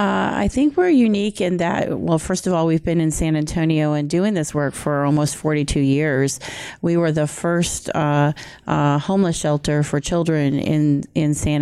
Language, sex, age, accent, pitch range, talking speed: English, female, 30-49, American, 150-170 Hz, 190 wpm